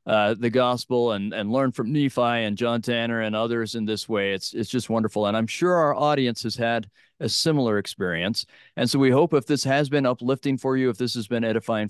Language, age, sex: English, 40-59, male